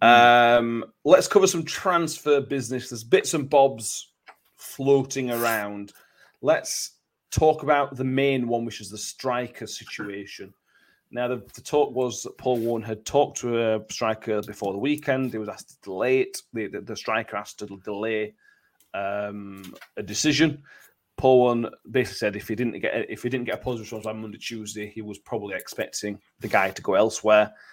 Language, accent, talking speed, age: English, British, 180 wpm, 30-49